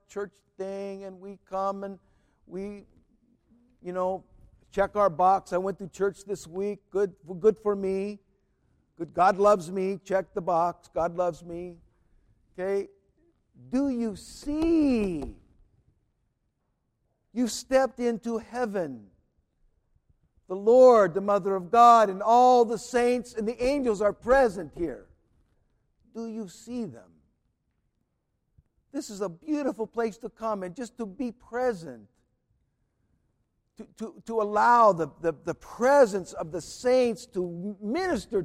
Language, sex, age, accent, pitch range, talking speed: English, male, 60-79, American, 175-225 Hz, 130 wpm